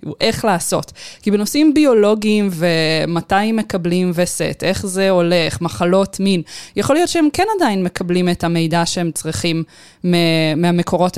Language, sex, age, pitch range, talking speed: Hebrew, female, 20-39, 170-245 Hz, 135 wpm